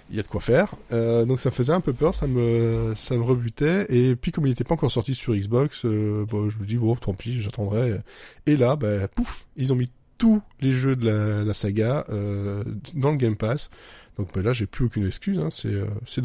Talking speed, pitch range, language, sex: 255 wpm, 105-130 Hz, French, male